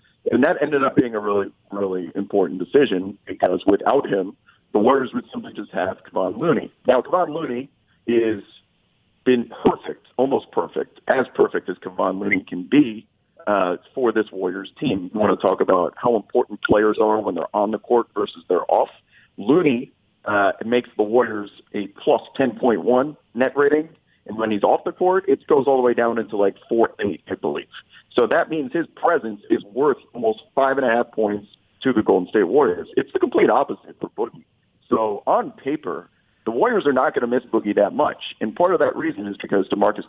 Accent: American